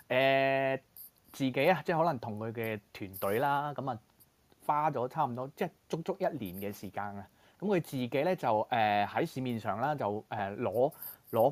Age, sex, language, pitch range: 20-39, male, Chinese, 105-145 Hz